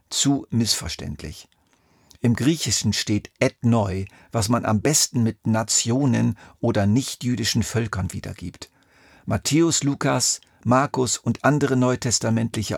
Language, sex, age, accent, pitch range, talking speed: German, male, 50-69, German, 105-135 Hz, 110 wpm